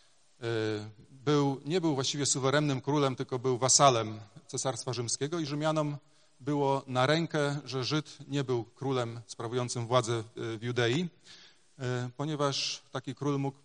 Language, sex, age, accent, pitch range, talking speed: Polish, male, 40-59, native, 125-145 Hz, 130 wpm